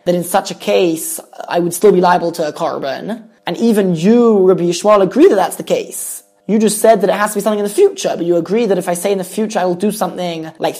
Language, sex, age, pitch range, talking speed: English, male, 20-39, 175-210 Hz, 280 wpm